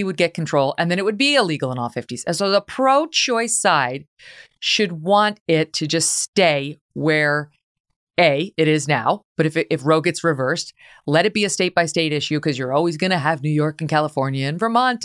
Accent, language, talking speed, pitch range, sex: American, English, 210 wpm, 145-175 Hz, female